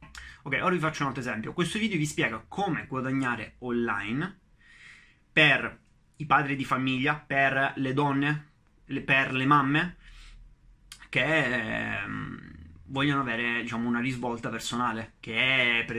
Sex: male